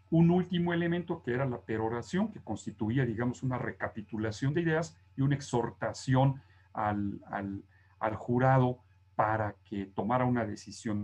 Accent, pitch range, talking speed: Mexican, 105-145 Hz, 140 wpm